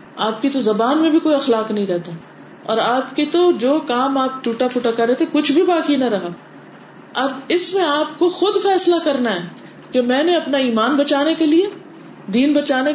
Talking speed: 215 wpm